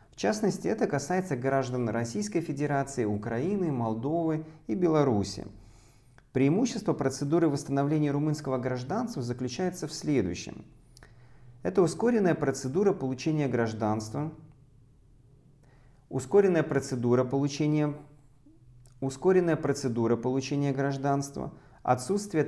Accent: native